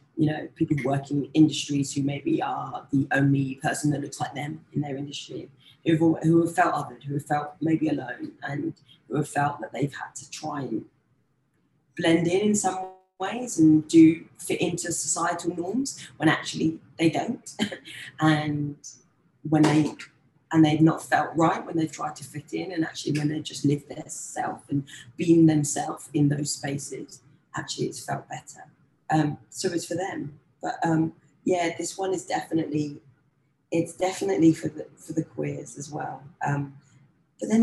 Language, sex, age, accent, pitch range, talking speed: English, female, 20-39, British, 145-165 Hz, 175 wpm